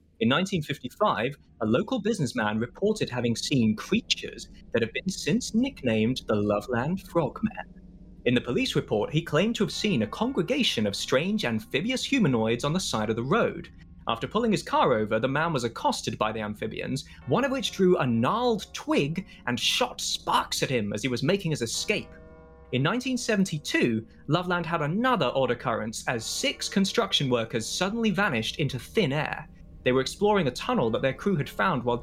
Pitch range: 120-195 Hz